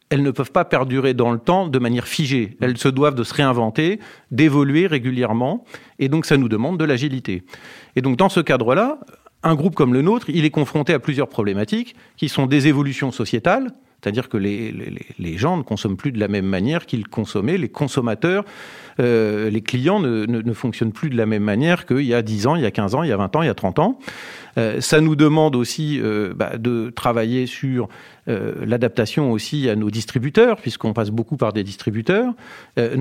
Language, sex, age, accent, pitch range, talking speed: French, male, 40-59, French, 115-150 Hz, 215 wpm